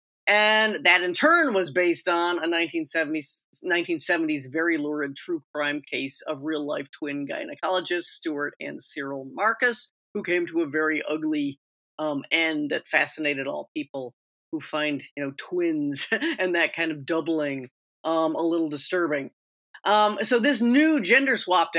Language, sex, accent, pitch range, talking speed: English, female, American, 150-195 Hz, 150 wpm